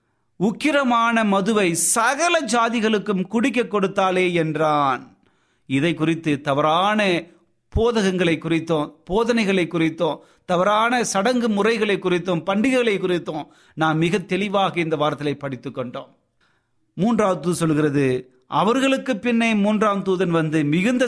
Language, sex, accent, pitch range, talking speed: Tamil, male, native, 165-230 Hz, 95 wpm